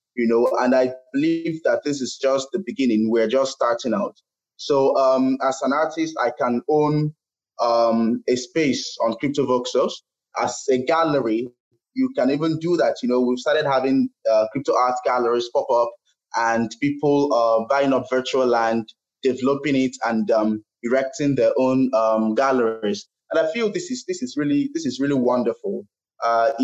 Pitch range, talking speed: 115-150 Hz, 175 wpm